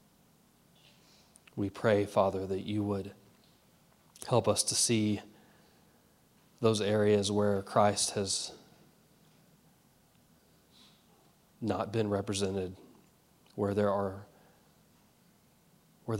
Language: English